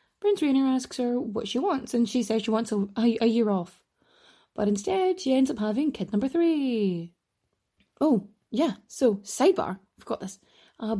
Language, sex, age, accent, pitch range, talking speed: English, female, 20-39, Irish, 210-280 Hz, 185 wpm